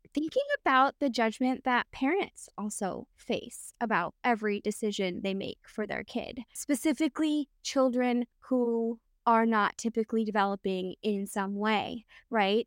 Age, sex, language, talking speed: 20-39, female, English, 130 wpm